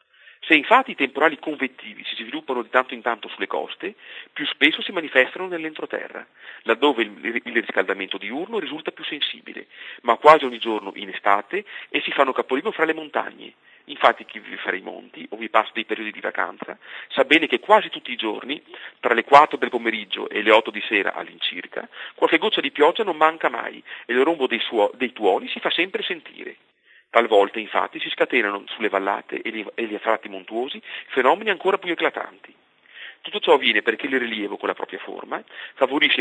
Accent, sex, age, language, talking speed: native, male, 40-59, Italian, 185 wpm